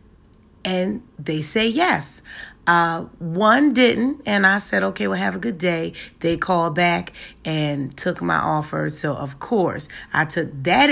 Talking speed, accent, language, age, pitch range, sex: 160 wpm, American, English, 40-59, 140-200 Hz, female